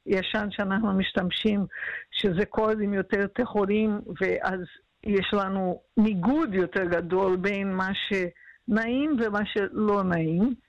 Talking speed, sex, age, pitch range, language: 110 wpm, female, 50-69, 190-230 Hz, Hebrew